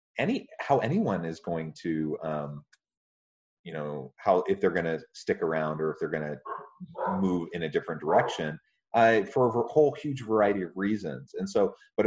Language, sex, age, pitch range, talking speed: English, male, 30-49, 80-120 Hz, 185 wpm